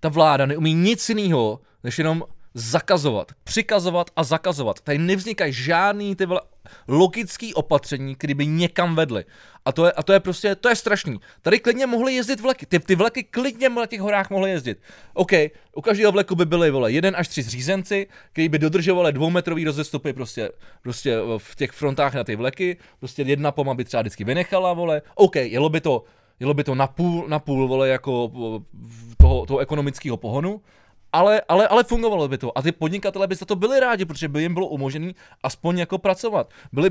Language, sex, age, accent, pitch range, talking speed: Czech, male, 20-39, native, 135-185 Hz, 185 wpm